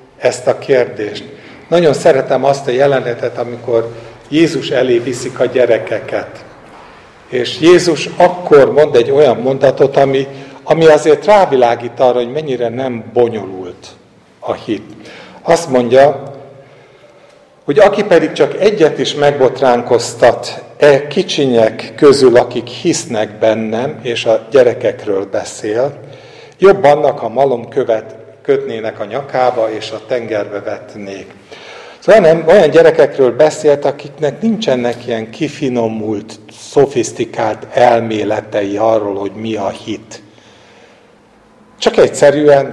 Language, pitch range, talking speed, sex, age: Hungarian, 115-160 Hz, 110 wpm, male, 50-69